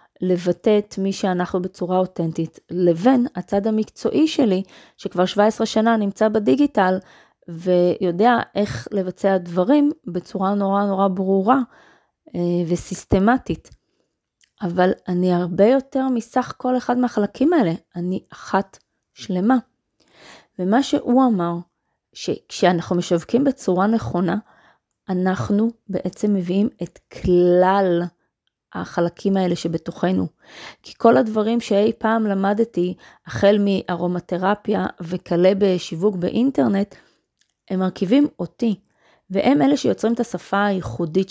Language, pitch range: Hebrew, 180-225 Hz